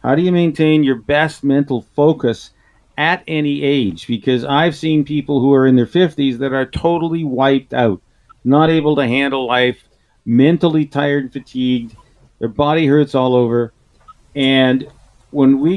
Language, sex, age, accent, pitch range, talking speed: English, male, 50-69, American, 120-155 Hz, 160 wpm